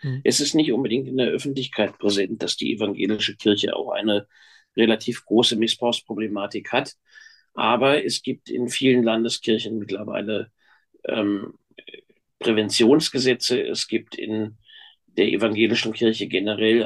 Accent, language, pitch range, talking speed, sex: German, German, 115-135 Hz, 120 wpm, male